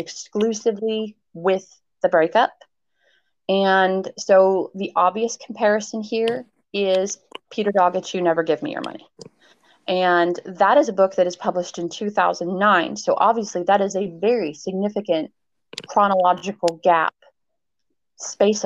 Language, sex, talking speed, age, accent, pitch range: English, female, 125 wpm, 30-49, American, 175-210 Hz